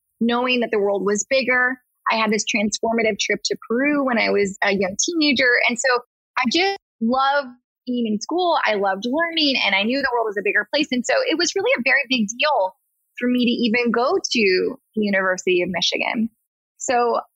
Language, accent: English, American